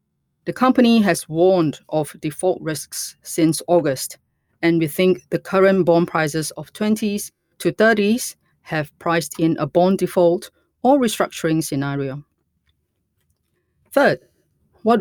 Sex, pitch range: female, 155-195 Hz